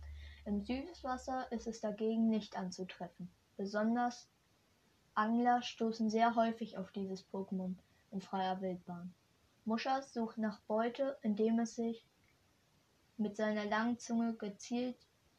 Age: 20-39